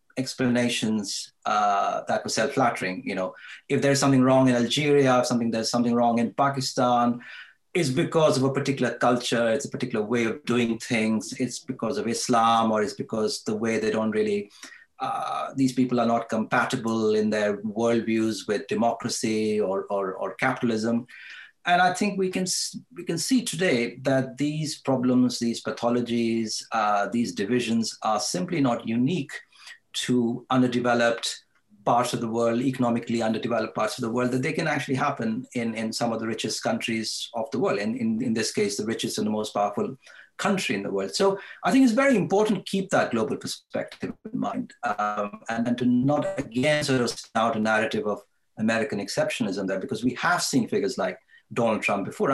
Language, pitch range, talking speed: English, 115-140 Hz, 185 wpm